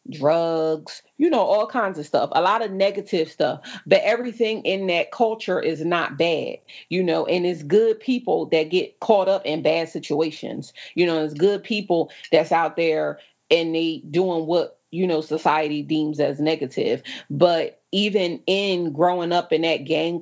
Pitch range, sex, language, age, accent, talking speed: 160-195 Hz, female, English, 30-49, American, 175 wpm